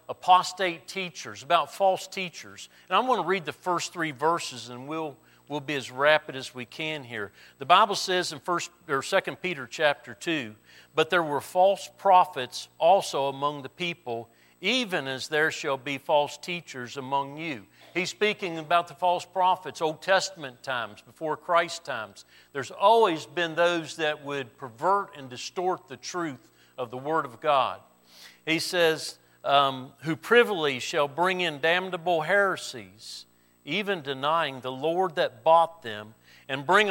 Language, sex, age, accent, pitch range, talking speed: English, male, 50-69, American, 135-180 Hz, 160 wpm